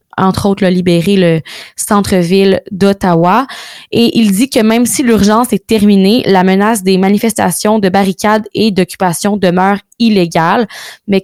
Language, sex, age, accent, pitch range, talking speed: French, female, 20-39, Canadian, 185-225 Hz, 145 wpm